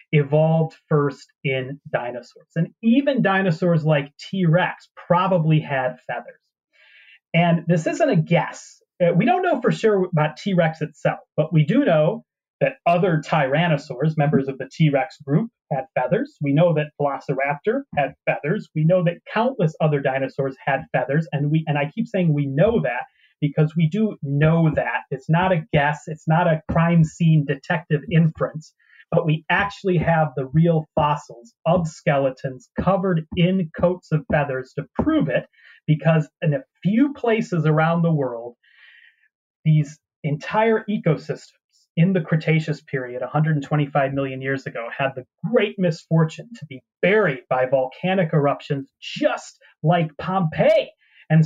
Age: 30-49